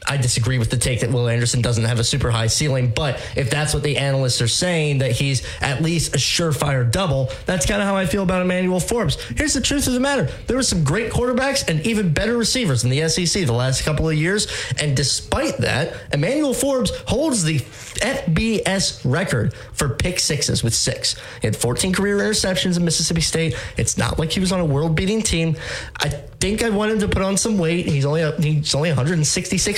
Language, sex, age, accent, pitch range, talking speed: English, male, 20-39, American, 125-190 Hz, 215 wpm